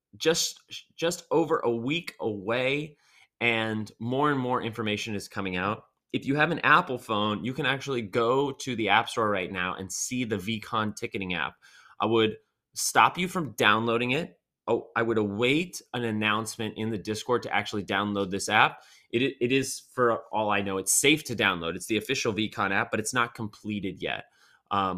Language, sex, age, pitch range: English, male, 20-39, 100-120 Hz